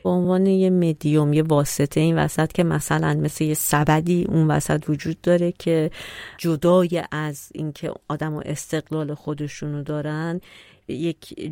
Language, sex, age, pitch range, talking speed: Persian, female, 30-49, 150-175 Hz, 145 wpm